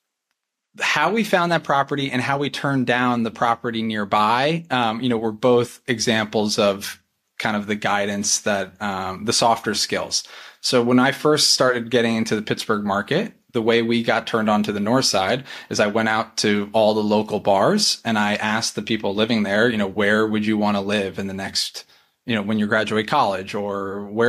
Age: 20-39